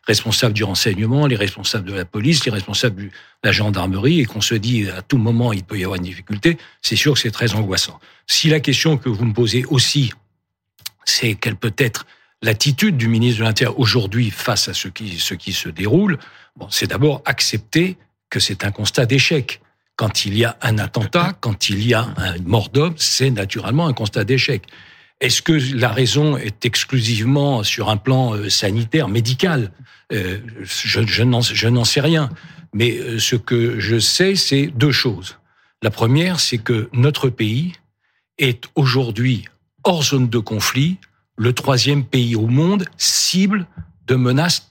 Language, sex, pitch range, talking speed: French, male, 110-140 Hz, 175 wpm